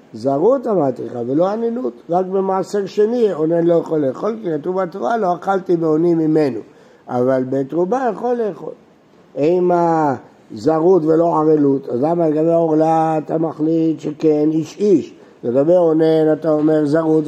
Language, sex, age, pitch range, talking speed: Hebrew, male, 60-79, 140-180 Hz, 140 wpm